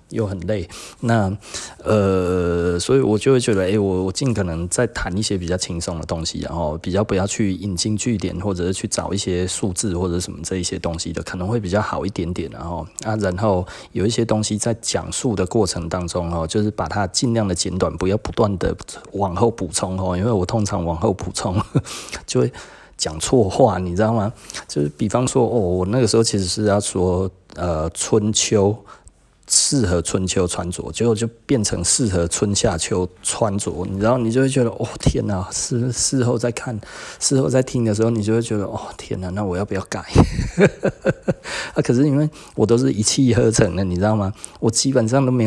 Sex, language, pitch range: male, Chinese, 90-115 Hz